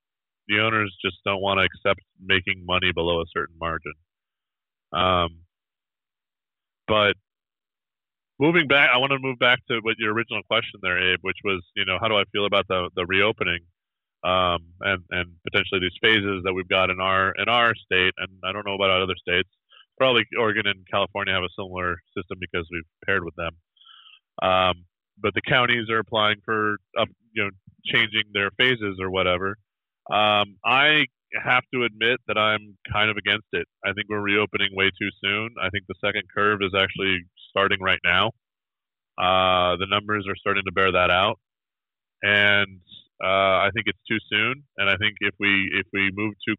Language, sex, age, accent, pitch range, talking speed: English, male, 20-39, American, 95-105 Hz, 185 wpm